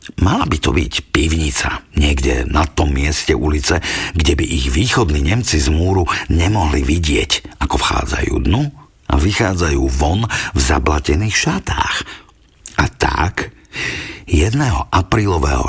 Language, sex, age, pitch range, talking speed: Slovak, male, 50-69, 70-90 Hz, 120 wpm